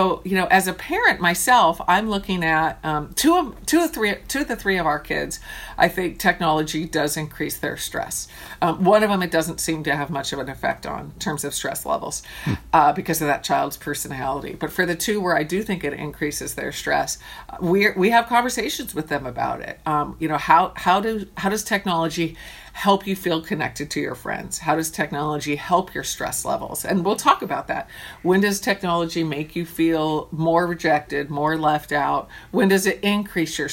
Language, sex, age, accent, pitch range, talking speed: English, female, 50-69, American, 150-190 Hz, 210 wpm